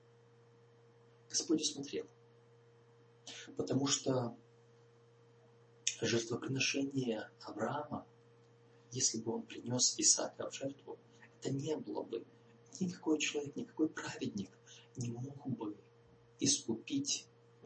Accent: native